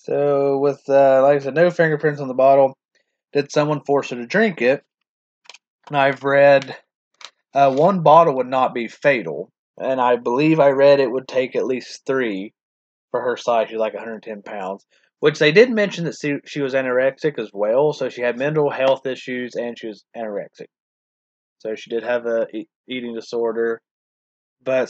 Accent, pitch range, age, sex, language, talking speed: American, 125-150 Hz, 30-49, male, English, 180 wpm